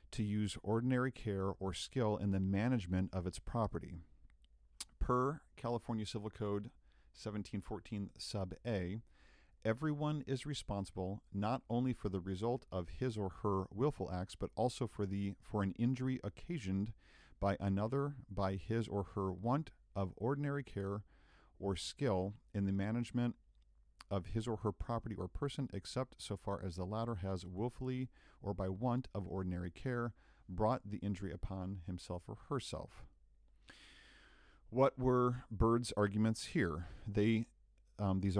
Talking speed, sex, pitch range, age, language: 145 wpm, male, 95-115 Hz, 50-69, English